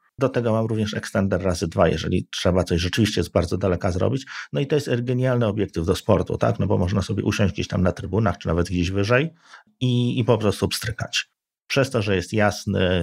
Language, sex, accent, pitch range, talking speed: Polish, male, native, 85-115 Hz, 215 wpm